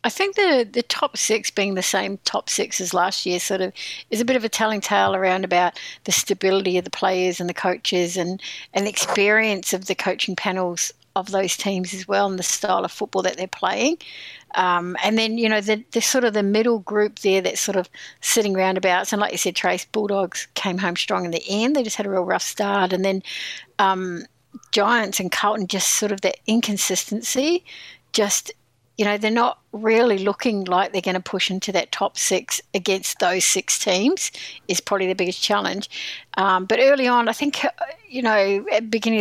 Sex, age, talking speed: female, 60-79, 210 wpm